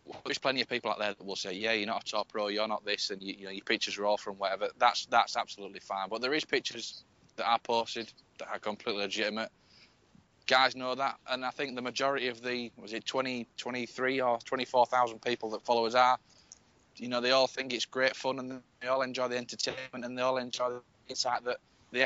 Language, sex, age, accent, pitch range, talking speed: English, male, 20-39, British, 110-125 Hz, 235 wpm